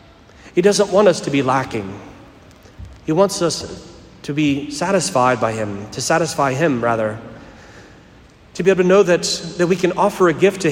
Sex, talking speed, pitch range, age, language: male, 180 wpm, 125-170 Hz, 40-59, English